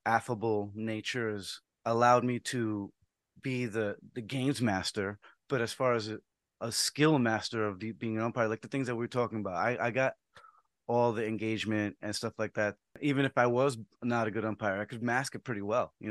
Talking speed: 205 wpm